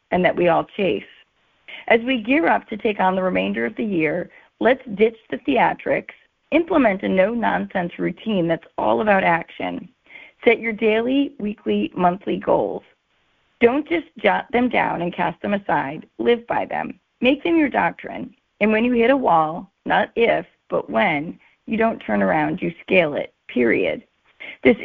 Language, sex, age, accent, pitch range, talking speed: English, female, 30-49, American, 175-240 Hz, 170 wpm